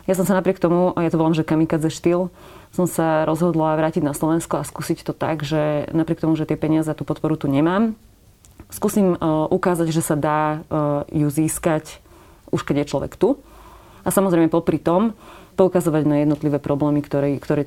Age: 20-39